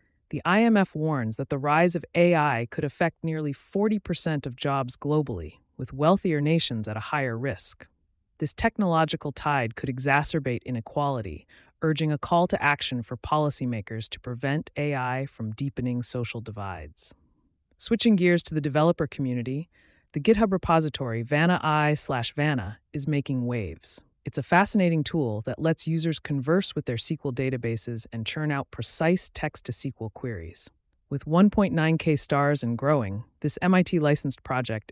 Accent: American